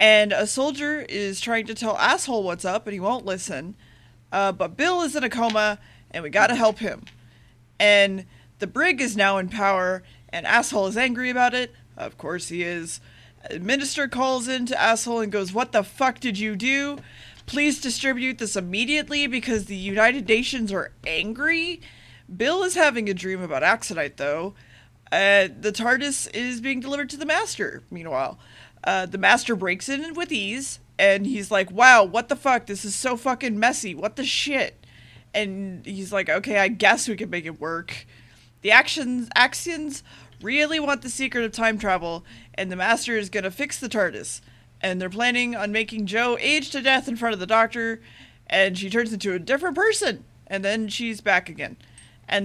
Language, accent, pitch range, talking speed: English, American, 190-255 Hz, 185 wpm